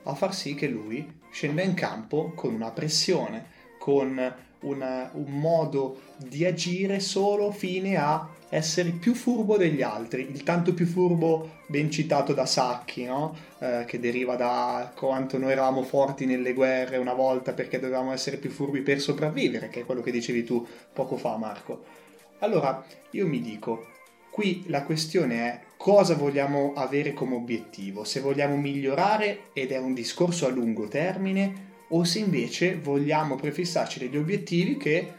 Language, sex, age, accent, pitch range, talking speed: Italian, male, 20-39, native, 130-170 Hz, 160 wpm